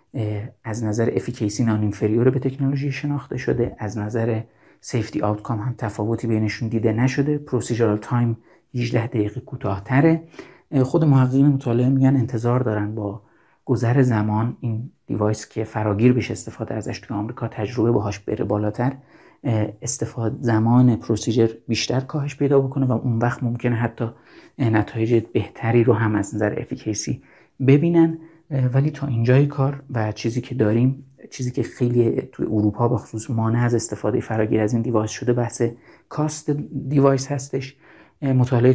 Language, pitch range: Persian, 110-130 Hz